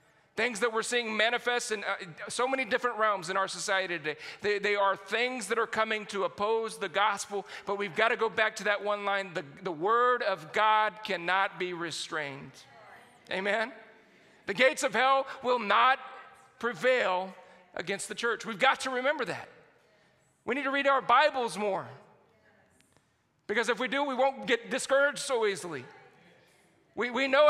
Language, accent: English, American